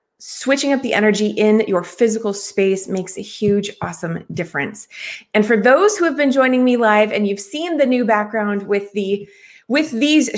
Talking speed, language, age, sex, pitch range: 185 wpm, English, 30-49, female, 190-250 Hz